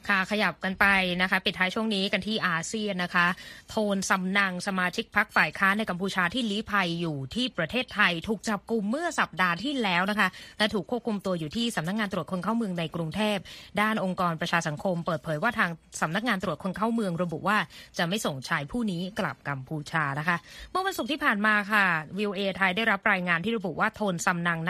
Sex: female